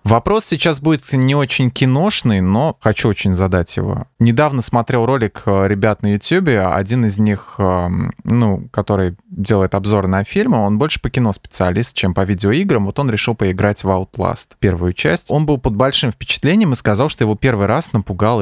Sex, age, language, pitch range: male, 20-39, Russian, 95-115 Hz